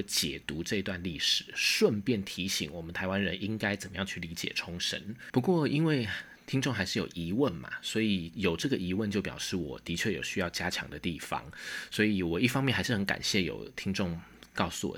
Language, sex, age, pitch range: Chinese, male, 20-39, 85-110 Hz